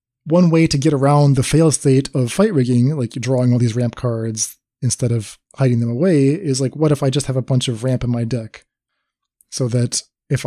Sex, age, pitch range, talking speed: male, 20-39, 120-155 Hz, 225 wpm